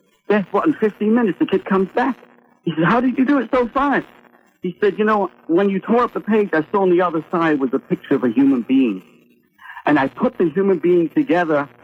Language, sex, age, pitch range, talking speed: English, male, 60-79, 150-210 Hz, 245 wpm